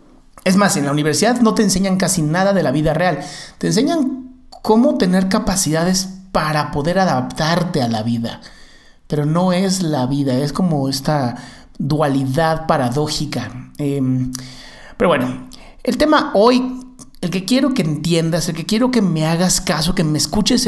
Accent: Mexican